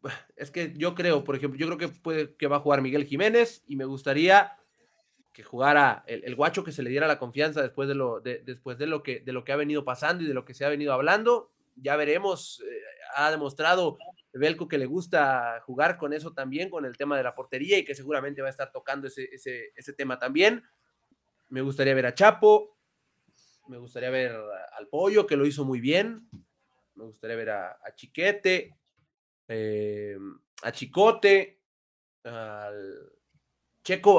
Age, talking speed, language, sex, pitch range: 30-49, 195 wpm, Spanish, male, 130-185 Hz